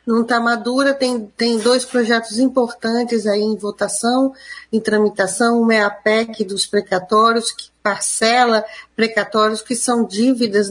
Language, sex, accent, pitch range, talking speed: Portuguese, female, Brazilian, 220-255 Hz, 130 wpm